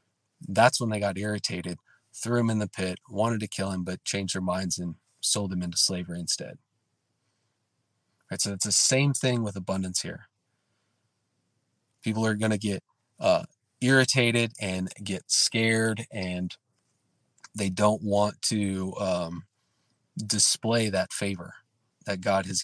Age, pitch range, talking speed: 30-49, 95-120 Hz, 140 wpm